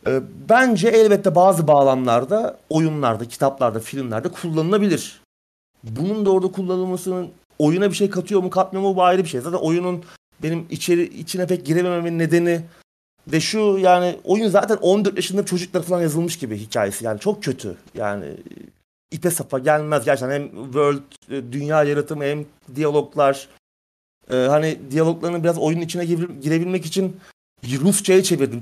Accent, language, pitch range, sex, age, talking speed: native, Turkish, 140-185 Hz, male, 30-49, 135 wpm